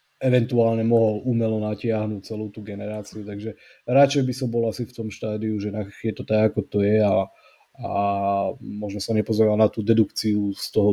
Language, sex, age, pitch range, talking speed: Slovak, male, 20-39, 105-115 Hz, 180 wpm